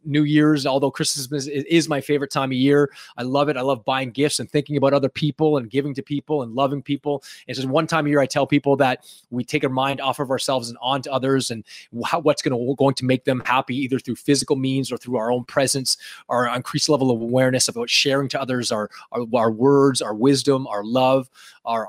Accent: American